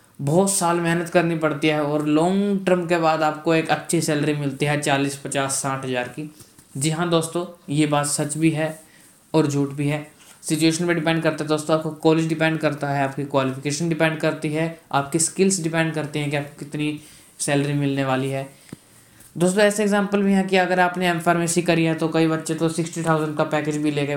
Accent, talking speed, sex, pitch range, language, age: native, 205 wpm, male, 145-170 Hz, Hindi, 20-39